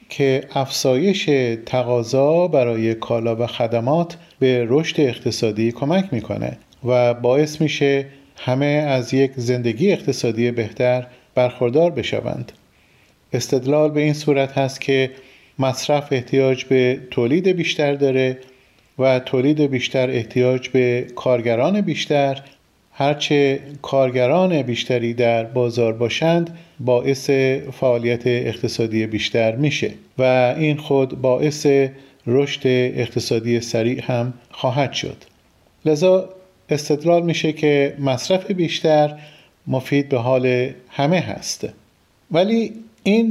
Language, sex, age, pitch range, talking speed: Persian, male, 40-59, 125-155 Hz, 105 wpm